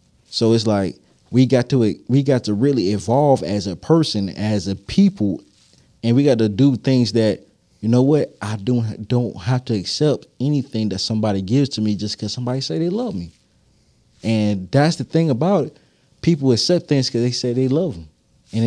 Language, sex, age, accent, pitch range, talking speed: English, male, 20-39, American, 105-140 Hz, 200 wpm